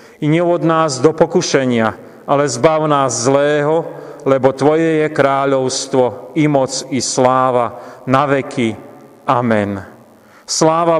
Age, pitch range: 40-59, 130-150 Hz